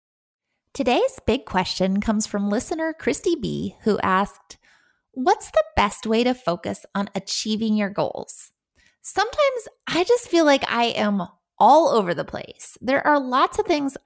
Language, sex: English, female